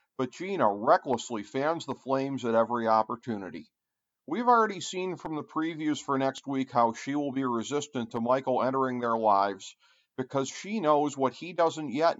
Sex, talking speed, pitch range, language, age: male, 170 wpm, 125-160 Hz, English, 50-69